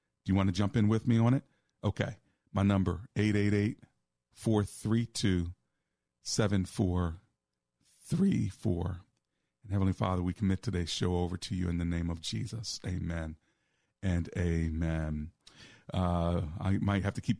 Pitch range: 90-105 Hz